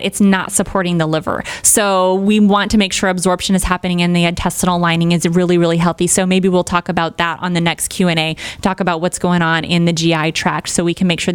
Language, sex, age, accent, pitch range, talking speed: English, female, 20-39, American, 180-235 Hz, 245 wpm